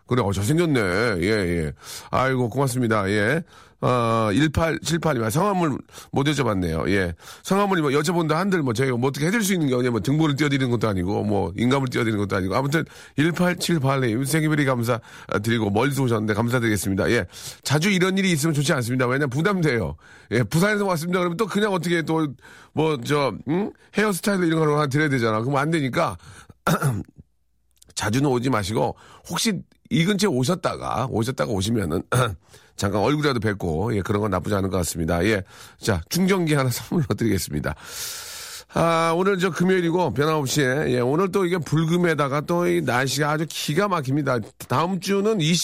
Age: 40-59